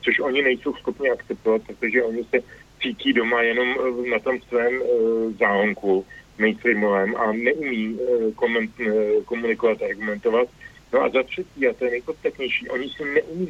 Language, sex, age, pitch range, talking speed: Slovak, male, 50-69, 115-135 Hz, 165 wpm